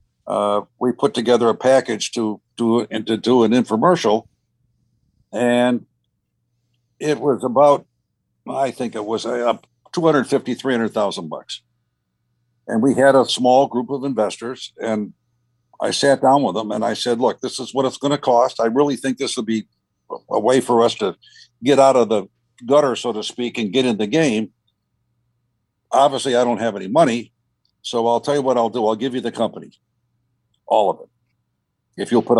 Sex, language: male, English